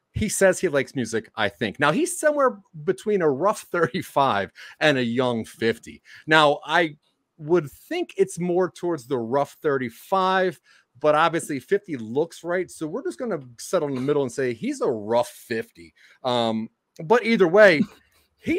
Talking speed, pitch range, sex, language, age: 170 wpm, 115-185 Hz, male, English, 30-49